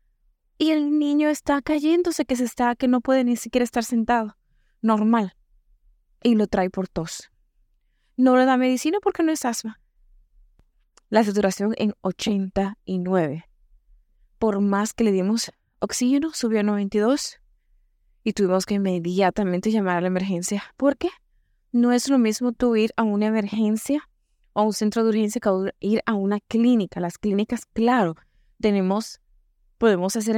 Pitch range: 190-240 Hz